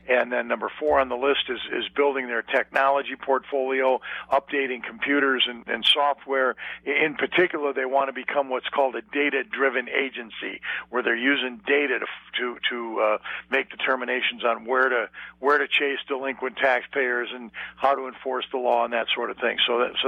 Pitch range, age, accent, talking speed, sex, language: 115-140 Hz, 50-69, American, 185 wpm, male, English